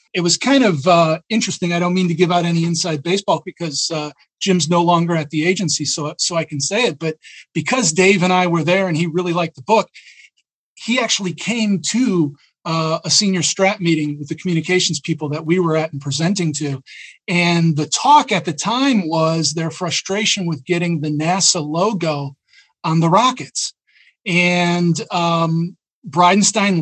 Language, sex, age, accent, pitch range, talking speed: English, male, 40-59, American, 165-190 Hz, 185 wpm